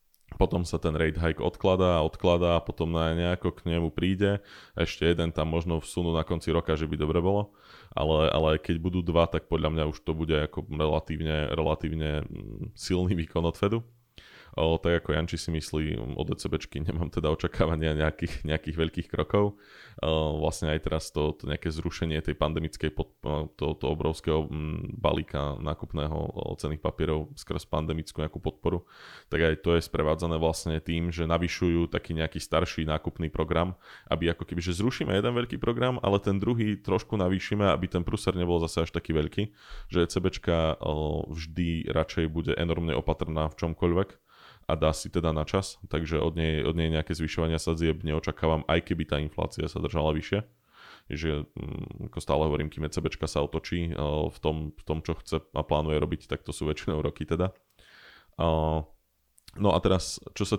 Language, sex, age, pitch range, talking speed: Slovak, male, 20-39, 80-90 Hz, 175 wpm